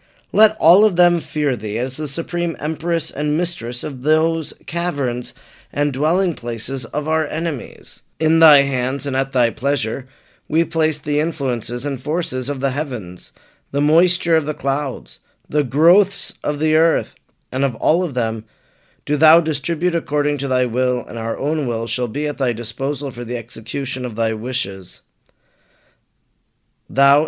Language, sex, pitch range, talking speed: English, male, 125-155 Hz, 165 wpm